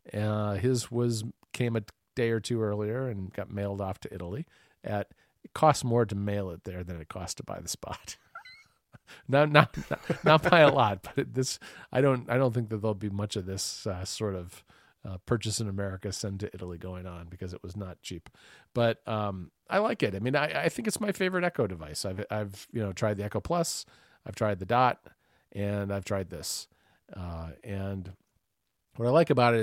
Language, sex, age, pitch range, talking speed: English, male, 40-59, 100-125 Hz, 215 wpm